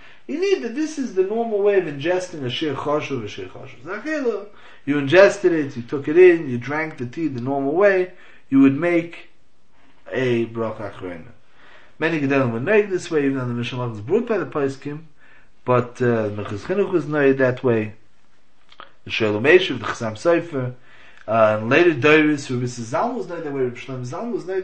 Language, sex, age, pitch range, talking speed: English, male, 30-49, 120-170 Hz, 200 wpm